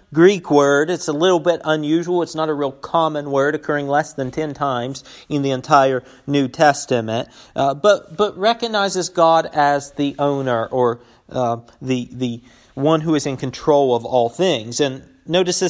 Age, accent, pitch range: 40-59, American, 140-195 Hz